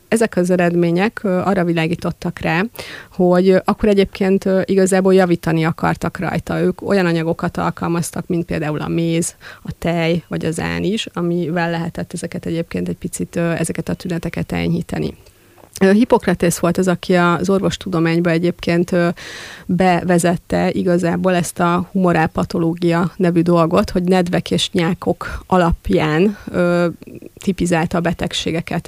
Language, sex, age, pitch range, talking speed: Hungarian, female, 30-49, 170-190 Hz, 125 wpm